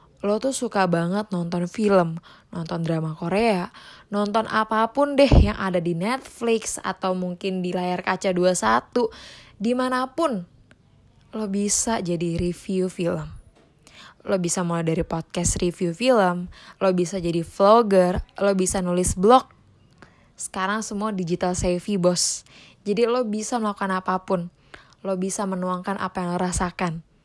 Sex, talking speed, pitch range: female, 130 wpm, 180-230 Hz